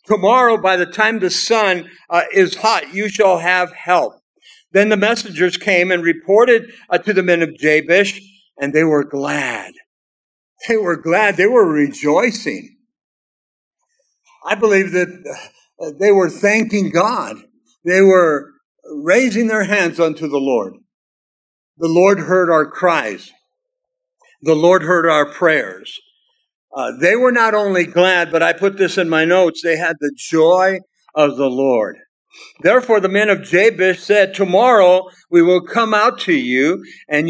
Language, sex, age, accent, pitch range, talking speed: English, male, 60-79, American, 175-215 Hz, 155 wpm